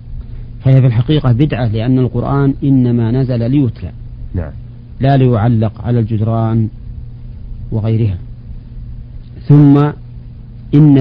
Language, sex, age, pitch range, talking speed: Arabic, male, 50-69, 115-130 Hz, 85 wpm